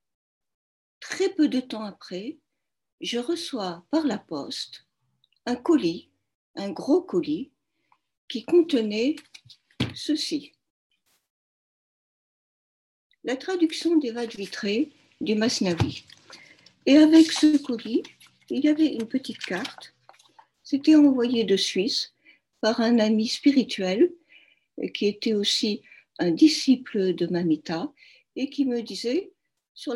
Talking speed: 110 wpm